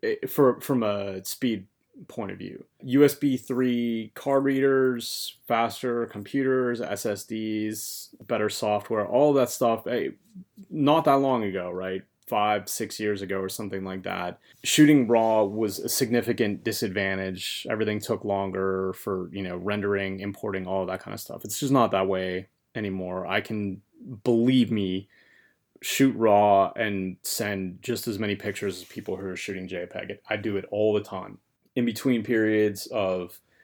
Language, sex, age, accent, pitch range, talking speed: English, male, 30-49, American, 95-120 Hz, 155 wpm